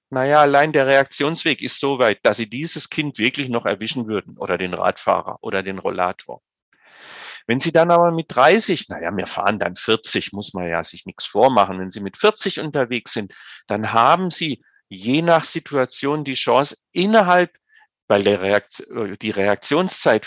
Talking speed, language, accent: 165 wpm, German, German